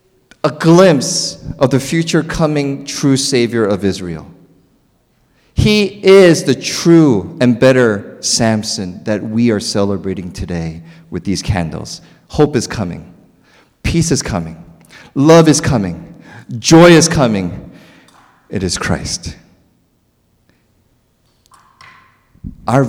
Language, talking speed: English, 105 wpm